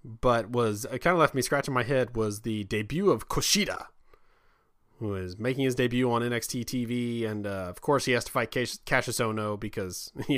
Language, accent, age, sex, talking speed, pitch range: English, American, 20-39, male, 200 wpm, 110-135 Hz